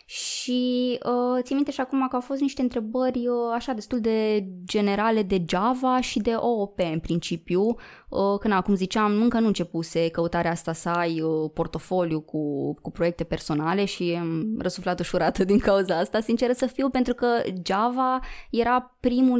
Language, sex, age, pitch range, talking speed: Romanian, female, 20-39, 170-235 Hz, 170 wpm